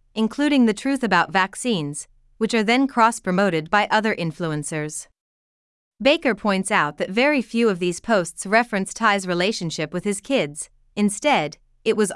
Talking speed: 150 wpm